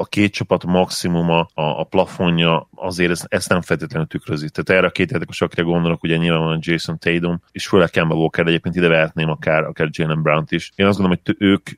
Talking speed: 225 wpm